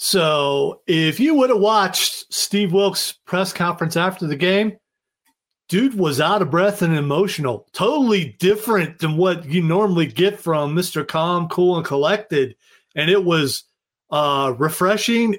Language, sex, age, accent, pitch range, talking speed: English, male, 40-59, American, 150-195 Hz, 150 wpm